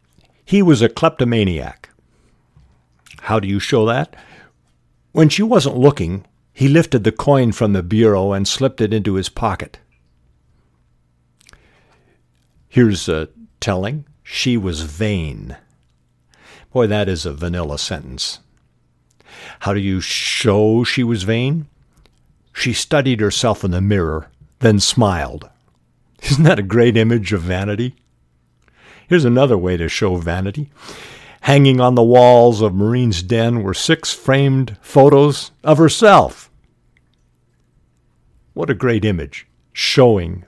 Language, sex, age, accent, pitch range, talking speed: English, male, 60-79, American, 75-125 Hz, 125 wpm